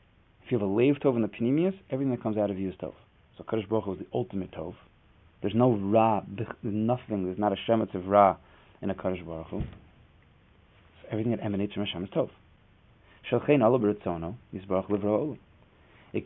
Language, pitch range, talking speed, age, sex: English, 95-115 Hz, 190 wpm, 30-49, male